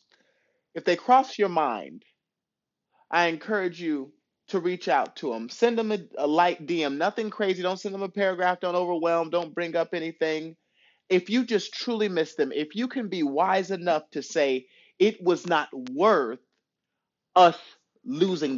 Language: English